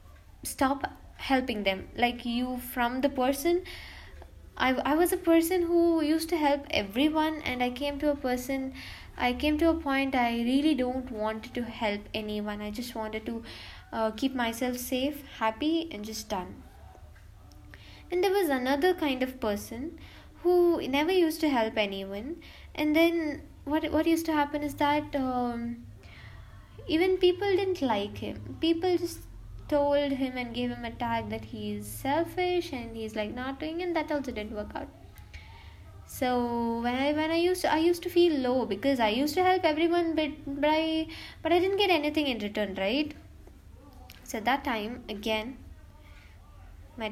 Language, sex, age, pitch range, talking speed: English, female, 10-29, 205-300 Hz, 175 wpm